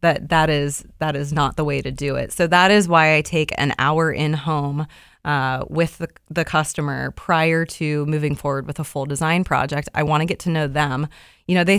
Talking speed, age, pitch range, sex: 225 wpm, 20-39, 150-170 Hz, female